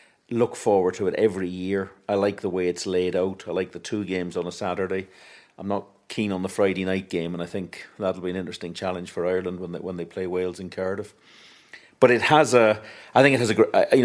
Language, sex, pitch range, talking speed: English, male, 90-110 Hz, 245 wpm